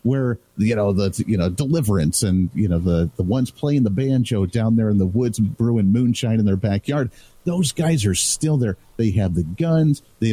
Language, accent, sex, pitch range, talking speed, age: English, American, male, 105-140 Hz, 210 wpm, 50-69